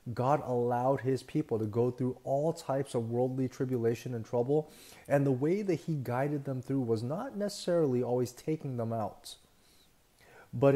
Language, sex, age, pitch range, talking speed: English, male, 30-49, 115-145 Hz, 165 wpm